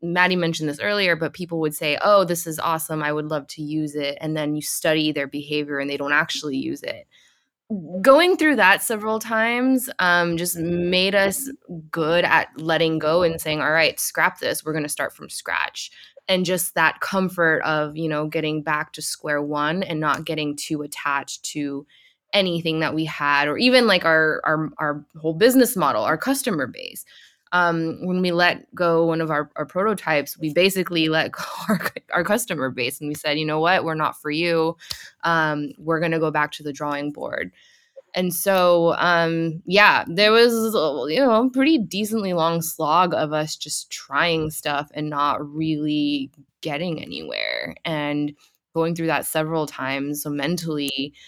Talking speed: 185 wpm